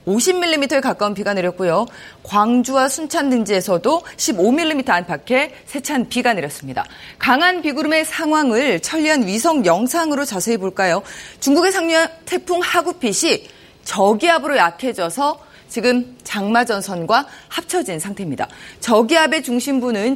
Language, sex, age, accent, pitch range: Korean, female, 30-49, native, 200-295 Hz